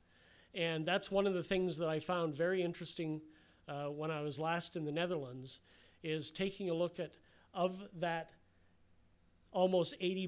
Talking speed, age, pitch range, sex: 165 wpm, 40-59, 120-175 Hz, male